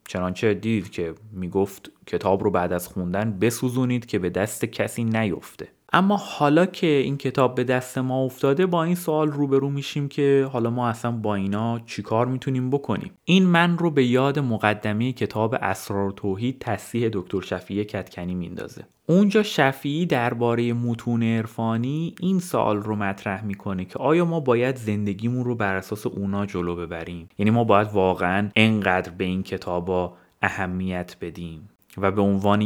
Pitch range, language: 100-140 Hz, Persian